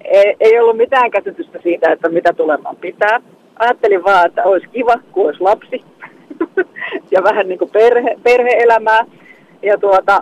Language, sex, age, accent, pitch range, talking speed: Finnish, female, 30-49, native, 185-285 Hz, 155 wpm